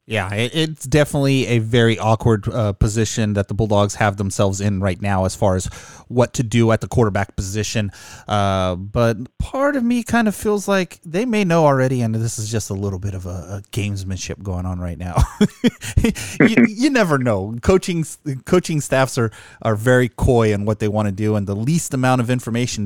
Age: 30-49